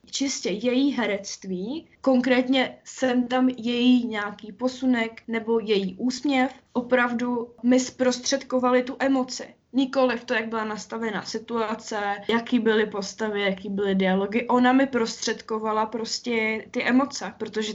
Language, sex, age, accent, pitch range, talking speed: Czech, female, 10-29, native, 205-240 Hz, 120 wpm